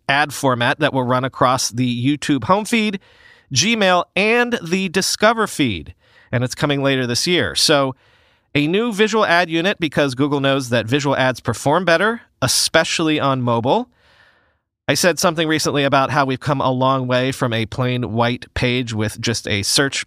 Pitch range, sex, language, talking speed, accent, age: 130-185 Hz, male, English, 175 wpm, American, 40-59